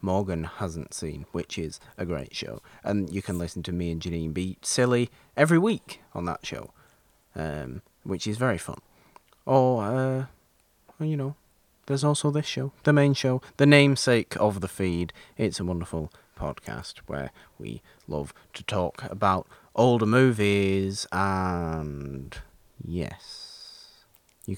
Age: 30-49